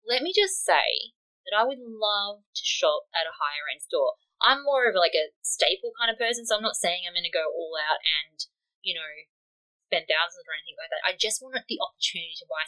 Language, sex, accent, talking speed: English, female, Australian, 230 wpm